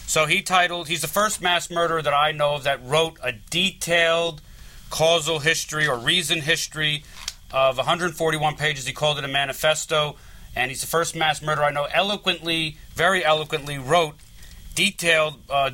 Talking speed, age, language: 165 wpm, 40-59, English